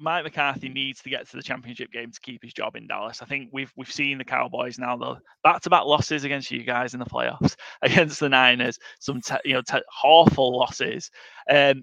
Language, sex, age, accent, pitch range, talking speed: English, male, 20-39, British, 125-145 Hz, 225 wpm